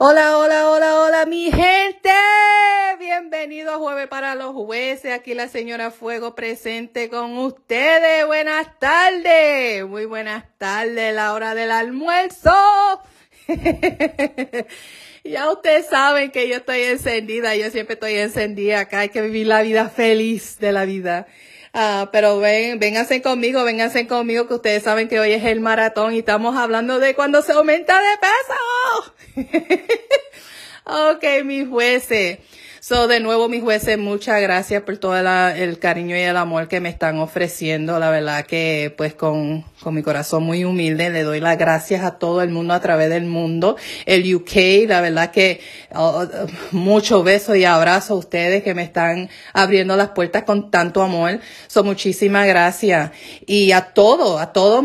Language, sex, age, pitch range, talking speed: Spanish, female, 30-49, 190-270 Hz, 160 wpm